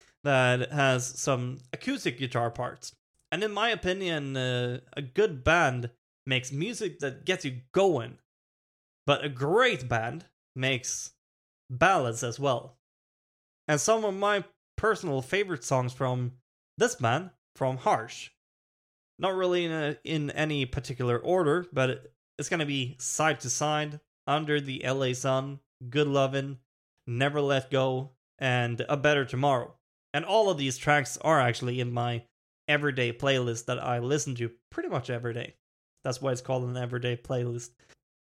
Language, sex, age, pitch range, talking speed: English, male, 20-39, 125-150 Hz, 145 wpm